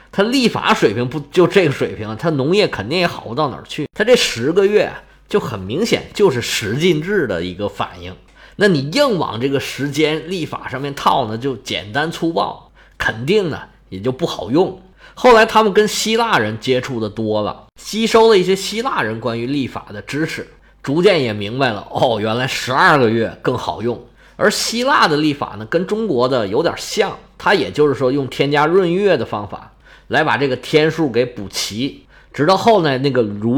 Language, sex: Chinese, male